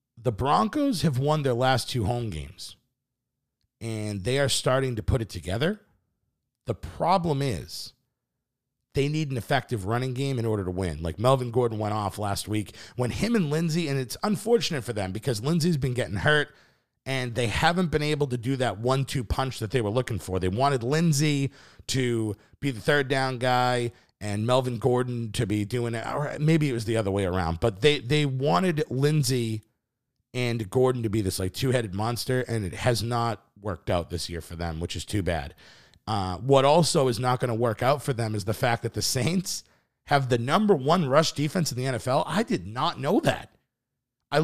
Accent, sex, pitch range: American, male, 105-140 Hz